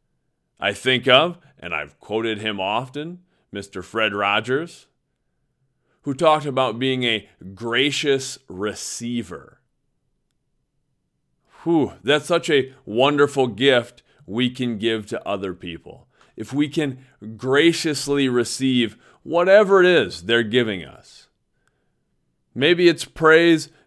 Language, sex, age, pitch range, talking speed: English, male, 30-49, 110-150 Hz, 110 wpm